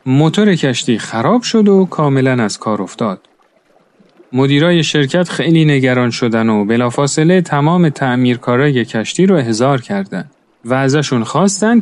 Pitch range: 125-175 Hz